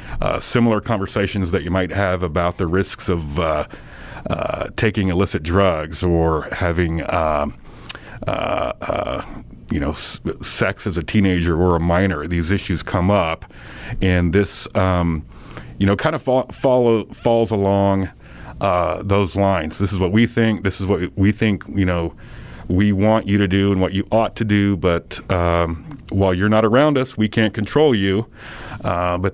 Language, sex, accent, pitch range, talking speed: English, male, American, 90-110 Hz, 170 wpm